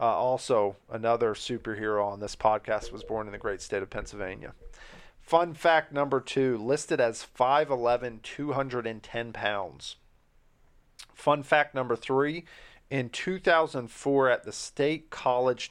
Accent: American